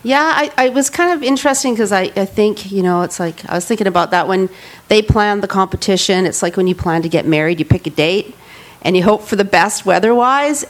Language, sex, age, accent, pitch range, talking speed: English, female, 40-59, American, 170-210 Hz, 245 wpm